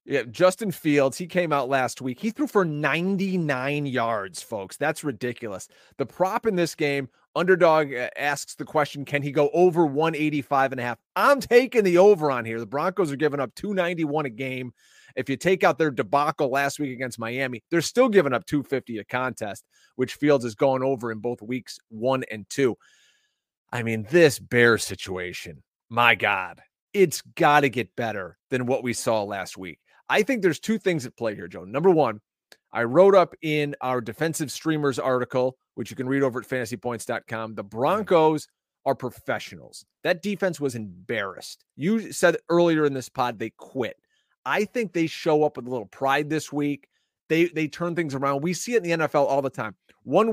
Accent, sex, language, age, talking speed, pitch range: American, male, English, 30-49, 190 wpm, 130-170 Hz